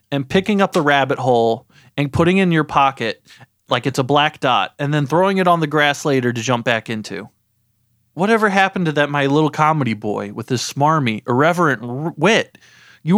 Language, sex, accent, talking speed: English, male, American, 195 wpm